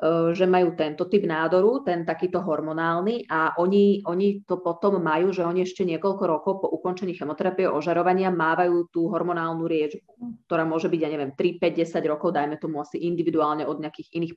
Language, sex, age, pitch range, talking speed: Slovak, female, 30-49, 155-180 Hz, 170 wpm